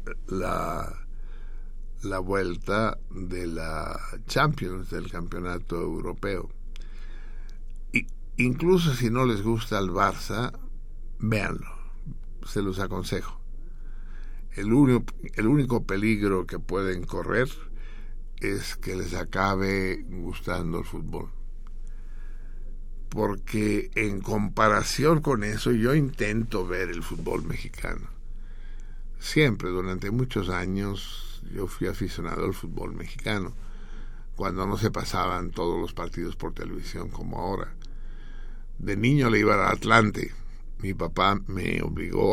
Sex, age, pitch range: male, 60-79, 90-115 Hz